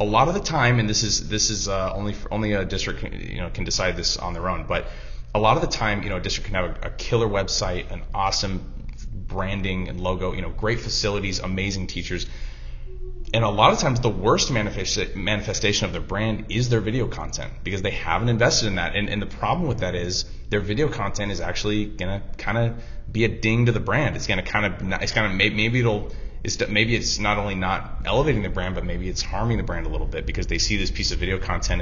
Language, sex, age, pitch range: English, male, 20-39, 90-110 Hz